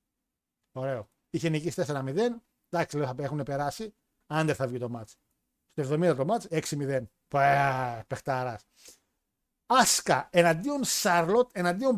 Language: Greek